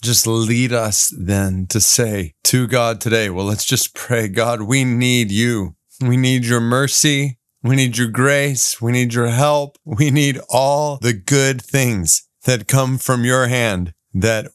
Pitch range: 115-140 Hz